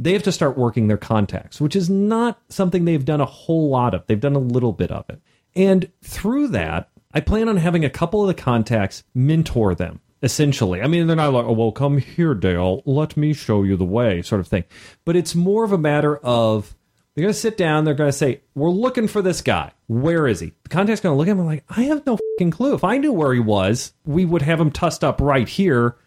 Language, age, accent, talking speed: English, 40-59, American, 250 wpm